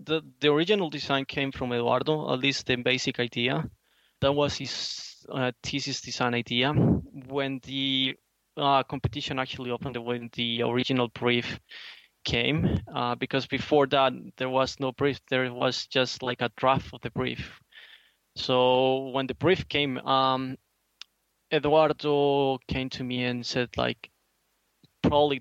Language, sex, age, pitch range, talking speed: English, male, 20-39, 125-140 Hz, 145 wpm